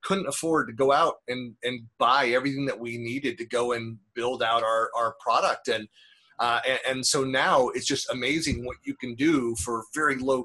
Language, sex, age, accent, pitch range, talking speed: English, male, 30-49, American, 115-135 Hz, 205 wpm